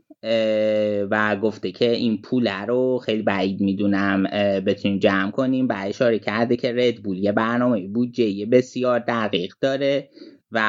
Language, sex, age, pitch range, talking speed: Persian, male, 30-49, 105-125 Hz, 135 wpm